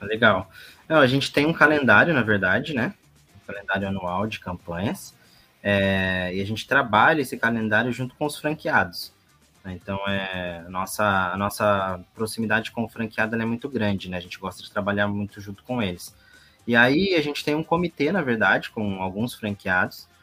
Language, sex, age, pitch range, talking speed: Portuguese, male, 20-39, 100-130 Hz, 185 wpm